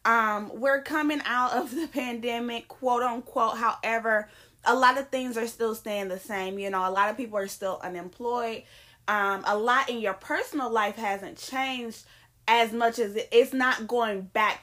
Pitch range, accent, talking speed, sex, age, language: 205-245 Hz, American, 180 wpm, female, 20-39, English